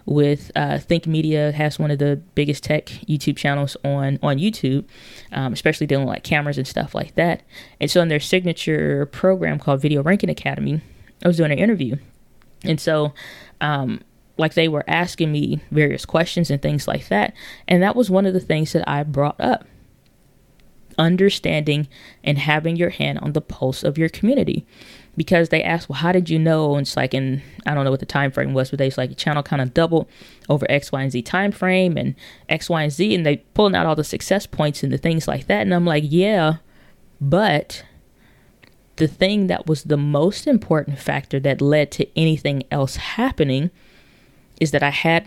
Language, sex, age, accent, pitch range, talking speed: English, female, 20-39, American, 140-170 Hz, 200 wpm